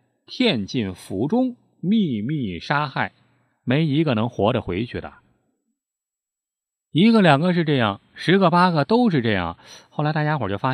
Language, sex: Chinese, male